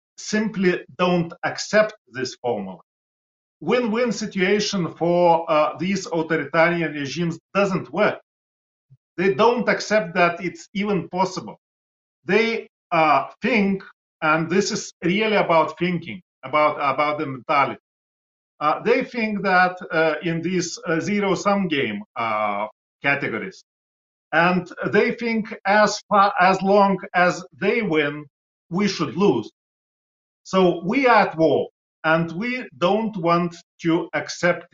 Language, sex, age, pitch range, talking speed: English, male, 40-59, 160-200 Hz, 120 wpm